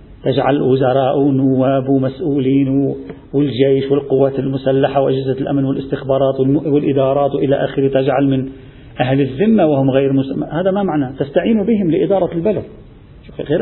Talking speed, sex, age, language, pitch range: 125 wpm, male, 40-59, Arabic, 135-180 Hz